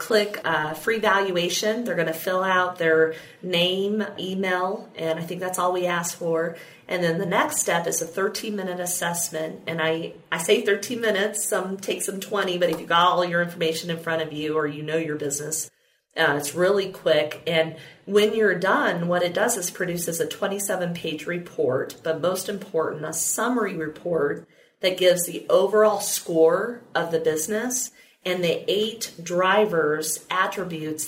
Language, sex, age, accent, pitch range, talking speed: English, female, 40-59, American, 160-200 Hz, 175 wpm